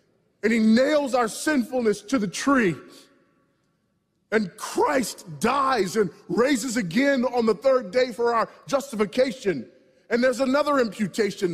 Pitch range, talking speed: 215-275 Hz, 130 wpm